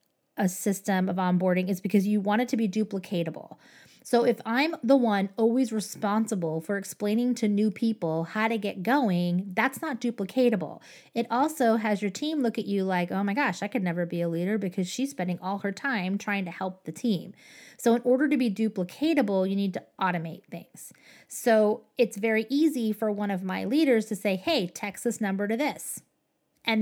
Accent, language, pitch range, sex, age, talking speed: American, English, 195-250 Hz, female, 20-39, 200 wpm